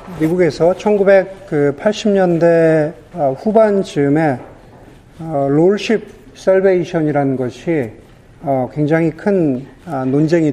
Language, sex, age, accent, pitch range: Korean, male, 50-69, native, 145-205 Hz